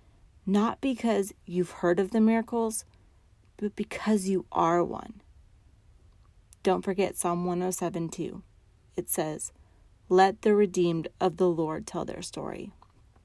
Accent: American